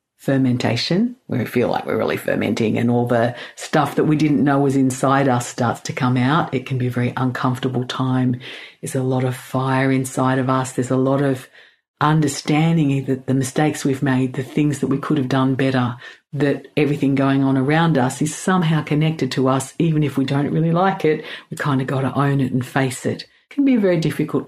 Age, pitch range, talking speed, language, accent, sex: 50-69, 130-155 Hz, 220 wpm, English, Australian, female